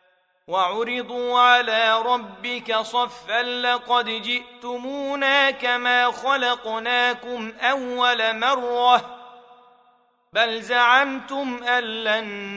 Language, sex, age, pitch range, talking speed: Arabic, male, 30-49, 190-245 Hz, 60 wpm